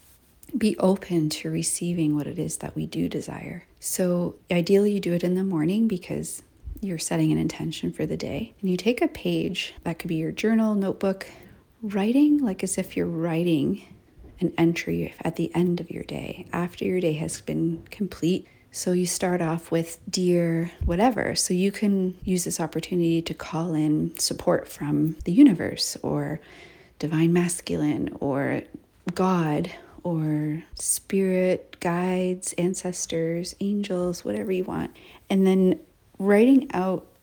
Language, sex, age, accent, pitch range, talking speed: English, female, 40-59, American, 165-195 Hz, 155 wpm